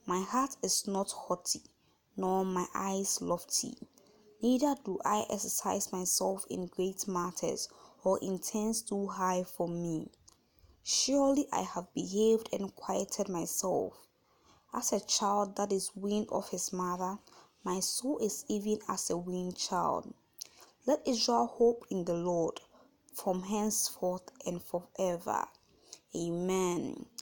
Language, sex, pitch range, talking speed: English, female, 180-215 Hz, 130 wpm